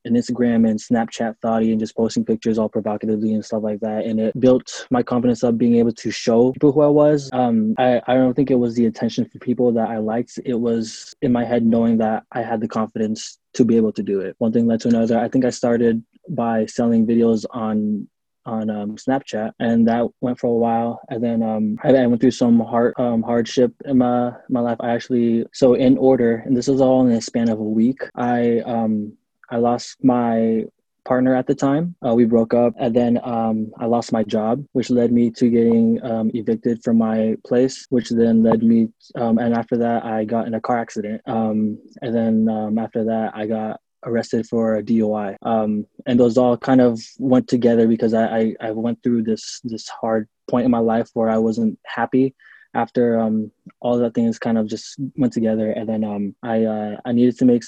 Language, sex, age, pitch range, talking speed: English, male, 20-39, 110-125 Hz, 220 wpm